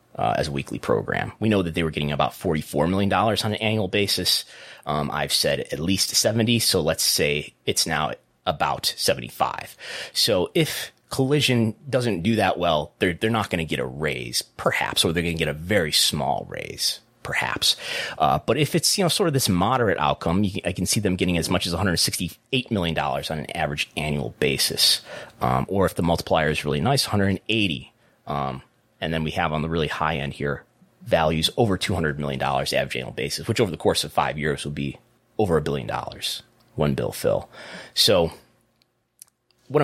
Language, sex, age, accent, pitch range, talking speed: English, male, 30-49, American, 80-115 Hz, 190 wpm